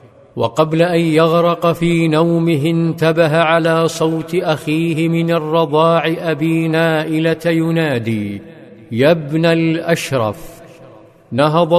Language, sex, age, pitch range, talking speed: Arabic, male, 50-69, 155-165 Hz, 90 wpm